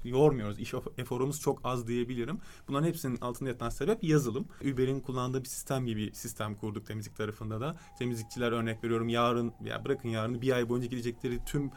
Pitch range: 120-145 Hz